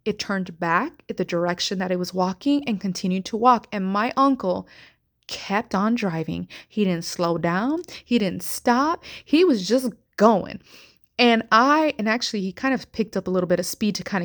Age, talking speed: 20-39, 195 wpm